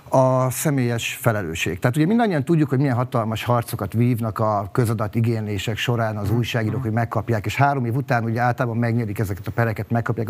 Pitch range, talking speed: 115-140 Hz, 170 wpm